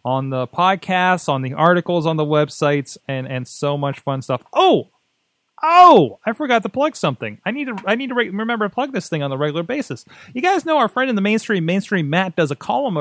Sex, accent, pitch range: male, American, 140-205 Hz